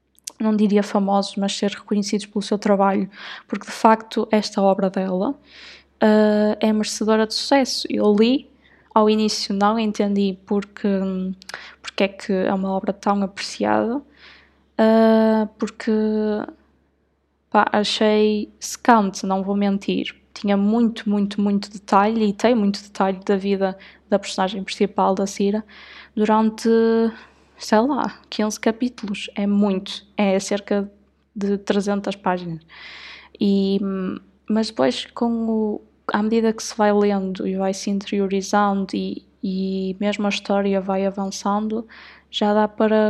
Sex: female